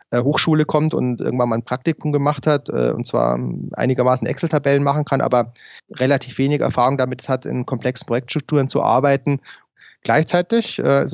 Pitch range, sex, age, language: 120-145 Hz, male, 30-49, German